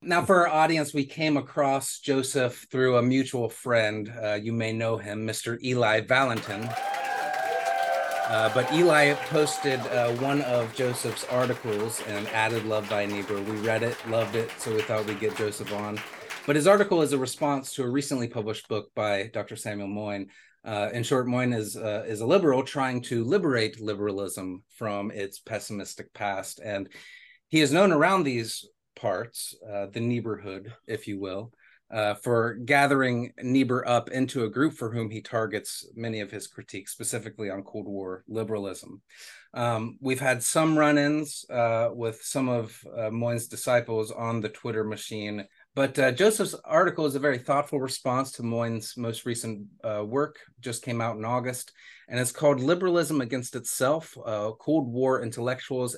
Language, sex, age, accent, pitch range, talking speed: English, male, 30-49, American, 110-135 Hz, 170 wpm